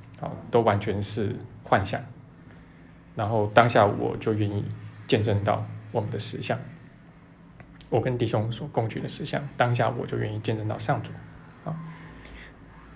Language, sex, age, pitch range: Chinese, male, 20-39, 105-130 Hz